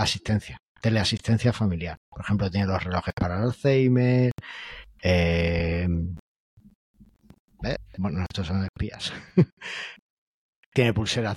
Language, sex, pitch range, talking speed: Spanish, male, 95-120 Hz, 95 wpm